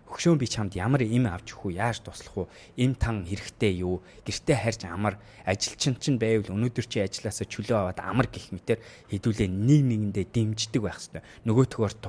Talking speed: 135 wpm